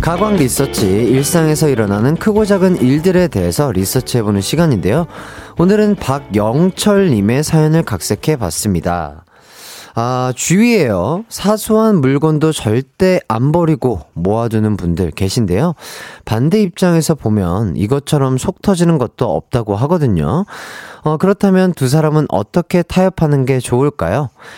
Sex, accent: male, native